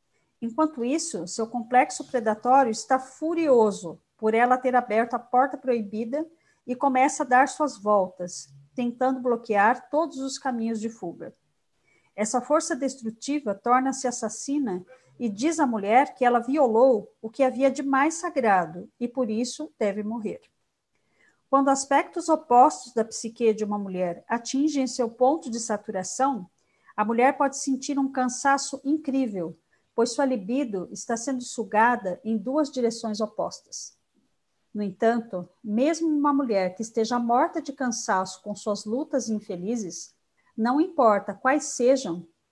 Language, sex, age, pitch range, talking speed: Portuguese, female, 50-69, 215-270 Hz, 140 wpm